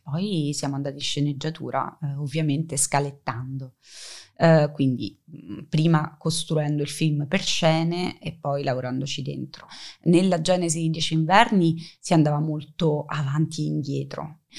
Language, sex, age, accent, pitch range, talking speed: Italian, female, 20-39, native, 155-185 Hz, 130 wpm